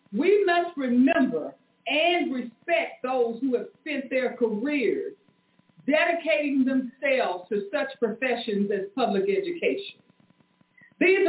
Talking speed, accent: 105 wpm, American